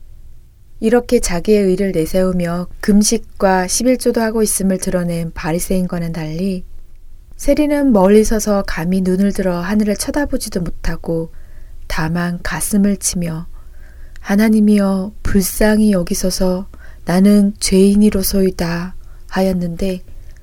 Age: 20-39